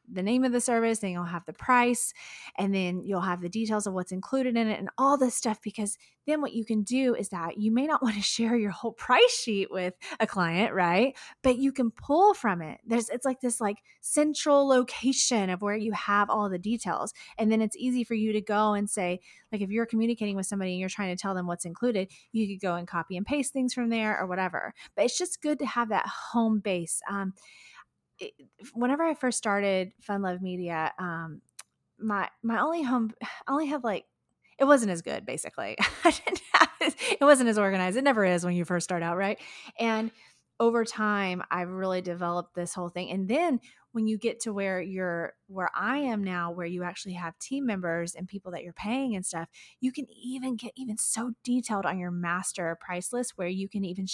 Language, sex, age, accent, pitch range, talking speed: English, female, 20-39, American, 185-240 Hz, 220 wpm